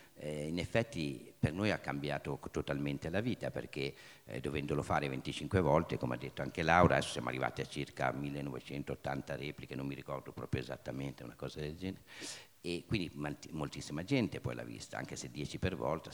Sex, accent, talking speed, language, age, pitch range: male, native, 175 wpm, Italian, 50-69, 70-90 Hz